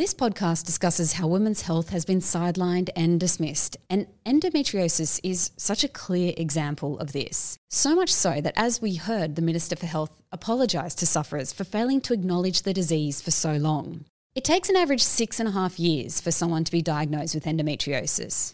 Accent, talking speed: Australian, 190 wpm